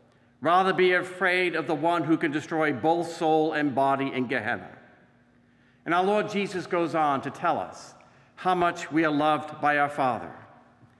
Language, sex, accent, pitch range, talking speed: English, male, American, 135-175 Hz, 175 wpm